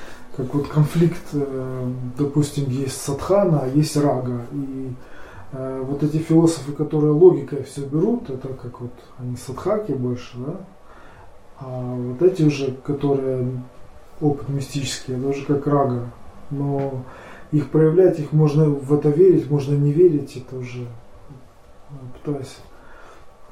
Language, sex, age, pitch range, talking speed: Russian, male, 20-39, 125-150 Hz, 125 wpm